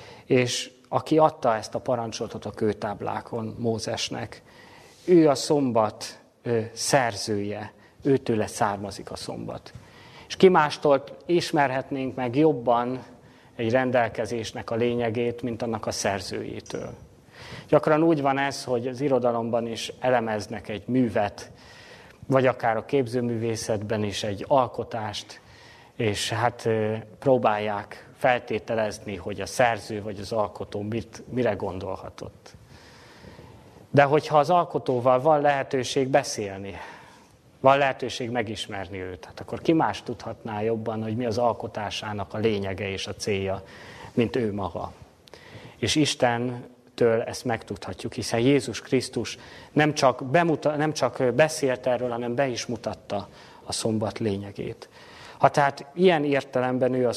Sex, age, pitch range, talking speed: male, 30-49, 110-130 Hz, 125 wpm